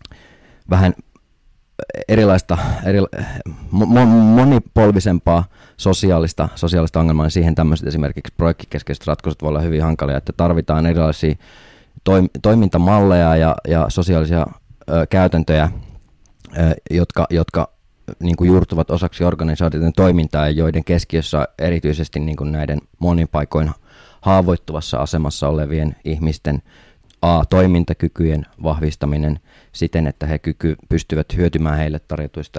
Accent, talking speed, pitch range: native, 105 wpm, 75-85 Hz